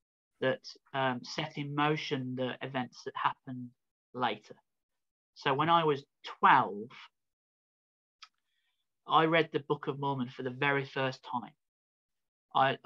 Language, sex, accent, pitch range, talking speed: English, male, British, 125-145 Hz, 125 wpm